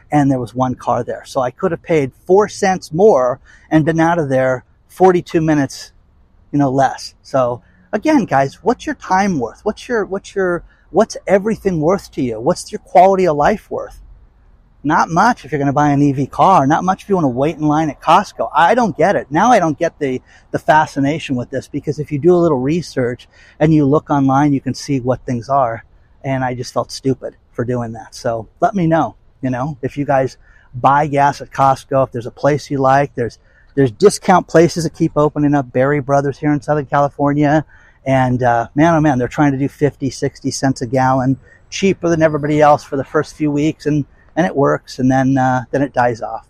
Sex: male